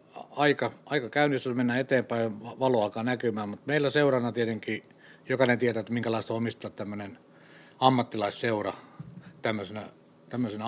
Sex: male